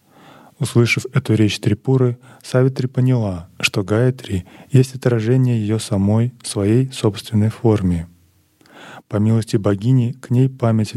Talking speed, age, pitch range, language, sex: 115 wpm, 20-39, 100-120 Hz, Russian, male